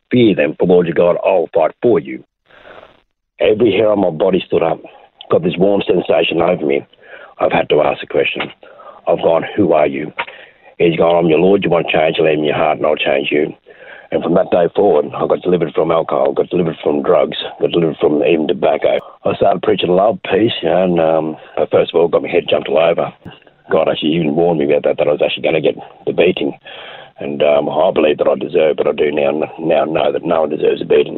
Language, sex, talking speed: English, male, 235 wpm